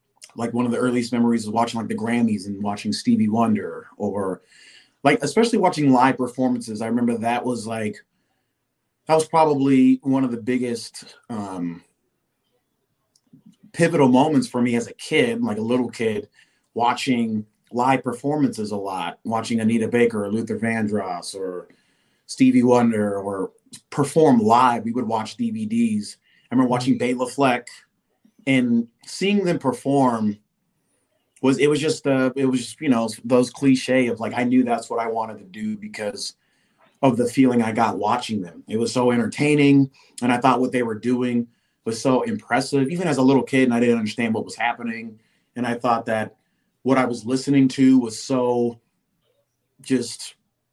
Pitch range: 115-135 Hz